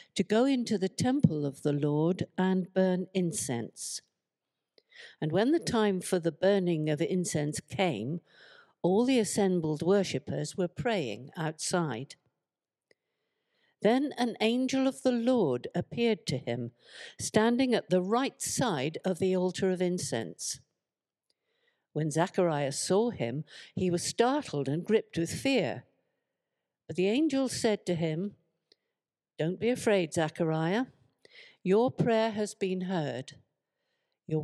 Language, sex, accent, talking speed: English, female, British, 130 wpm